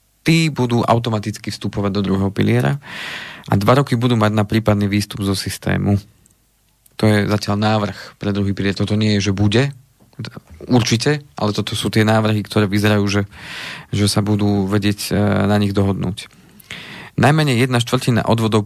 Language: Slovak